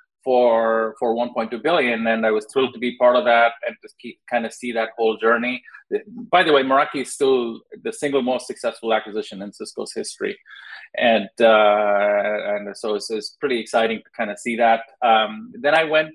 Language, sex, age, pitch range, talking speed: English, male, 30-49, 115-135 Hz, 195 wpm